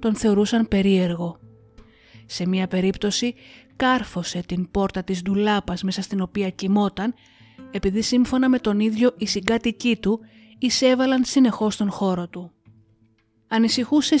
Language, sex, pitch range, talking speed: Greek, female, 190-245 Hz, 125 wpm